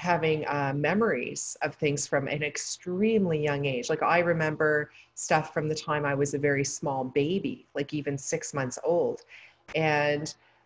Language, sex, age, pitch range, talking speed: English, female, 40-59, 150-185 Hz, 165 wpm